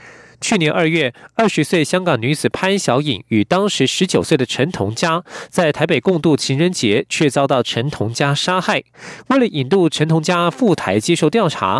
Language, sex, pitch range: Chinese, male, 130-190 Hz